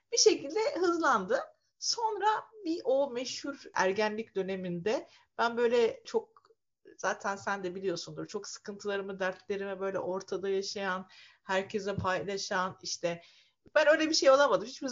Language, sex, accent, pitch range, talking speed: Turkish, female, native, 195-310 Hz, 125 wpm